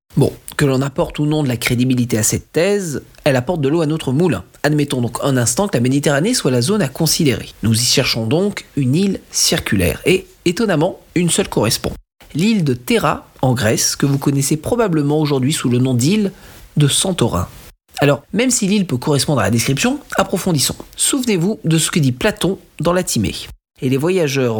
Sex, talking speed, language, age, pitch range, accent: male, 200 wpm, French, 40-59, 130-185 Hz, French